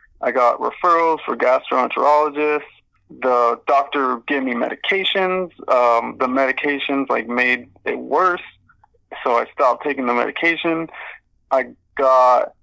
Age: 20-39